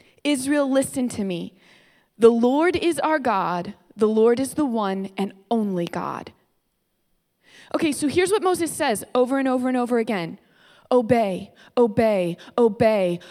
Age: 20-39